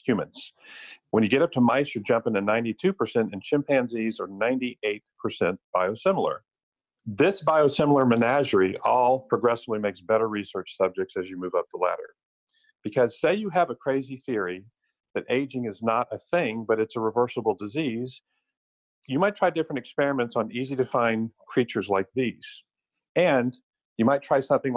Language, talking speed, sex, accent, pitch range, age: English, 160 wpm, male, American, 110-140 Hz, 50-69